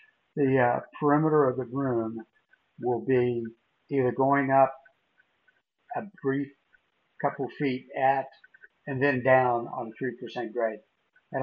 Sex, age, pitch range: male, 60-79, 130-170 Hz